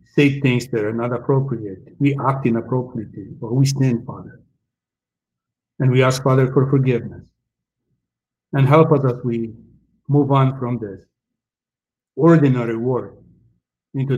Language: English